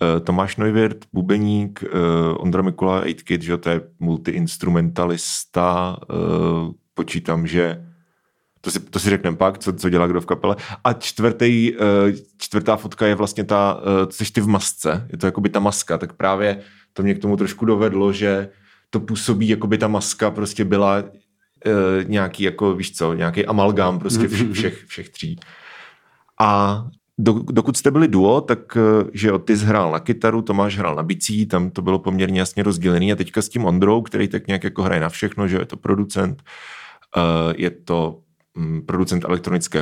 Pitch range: 90-105 Hz